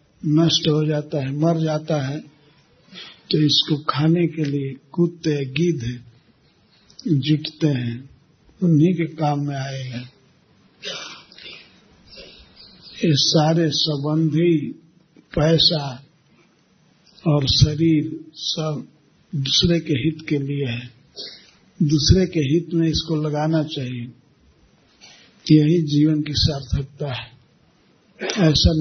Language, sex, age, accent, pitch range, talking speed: Hindi, male, 50-69, native, 140-165 Hz, 100 wpm